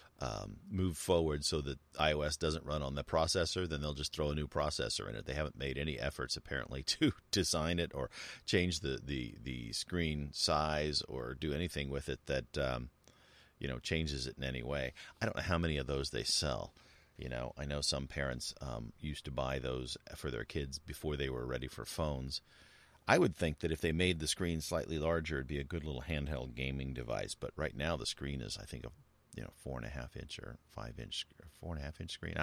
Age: 50-69